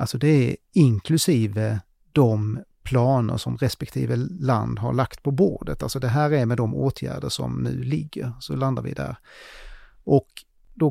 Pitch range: 115-155 Hz